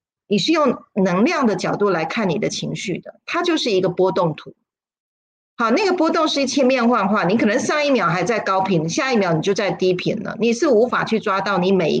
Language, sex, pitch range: Chinese, female, 185-260 Hz